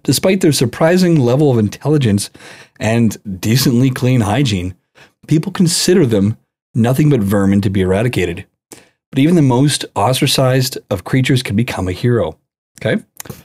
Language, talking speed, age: English, 145 wpm, 40-59